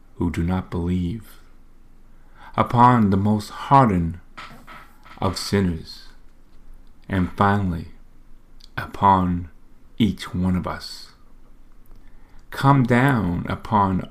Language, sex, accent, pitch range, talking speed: English, male, American, 90-110 Hz, 85 wpm